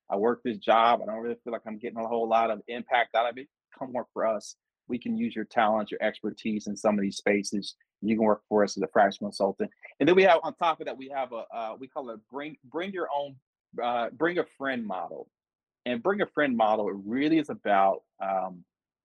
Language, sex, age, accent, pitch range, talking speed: English, male, 30-49, American, 110-145 Hz, 250 wpm